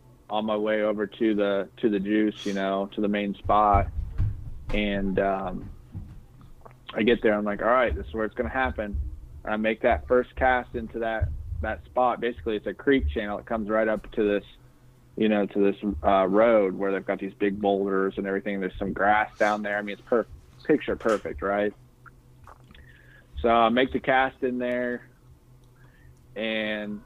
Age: 20-39